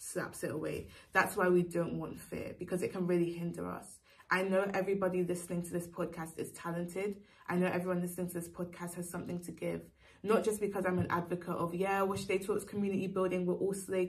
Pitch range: 170-185 Hz